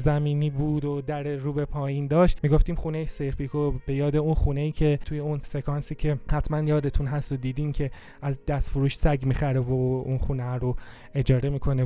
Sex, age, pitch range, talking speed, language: male, 20-39, 135-165 Hz, 180 wpm, Persian